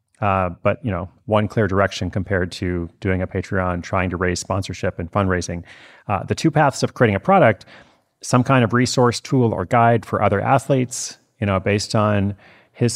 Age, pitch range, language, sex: 30-49, 95-120 Hz, English, male